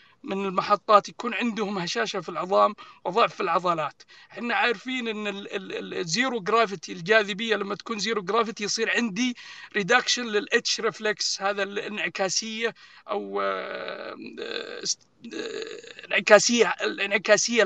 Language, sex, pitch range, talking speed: Arabic, male, 195-230 Hz, 100 wpm